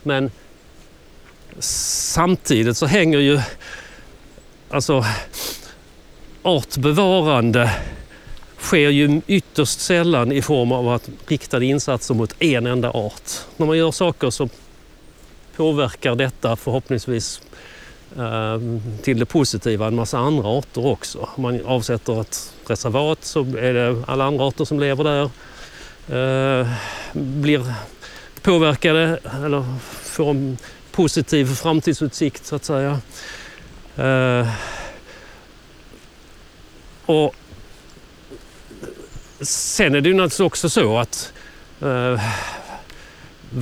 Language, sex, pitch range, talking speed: Swedish, male, 120-150 Hz, 100 wpm